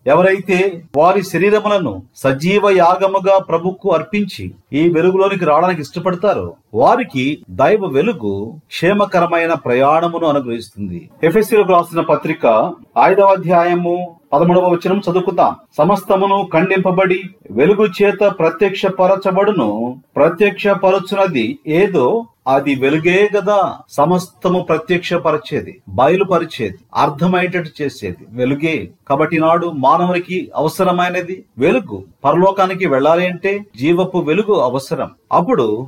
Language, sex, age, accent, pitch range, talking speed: Telugu, male, 40-59, native, 155-195 Hz, 90 wpm